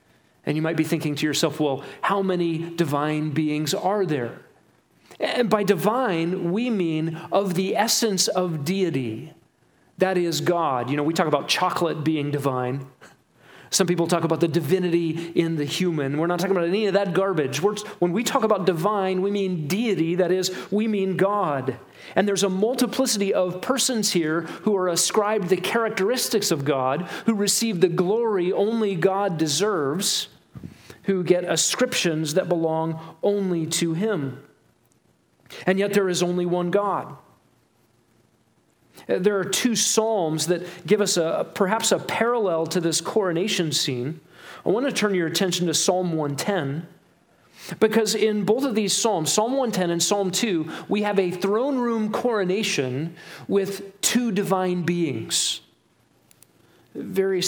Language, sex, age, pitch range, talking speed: English, male, 40-59, 160-205 Hz, 155 wpm